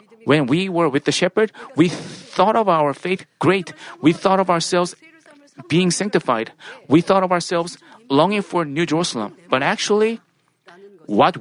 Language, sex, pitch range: Korean, male, 165-200 Hz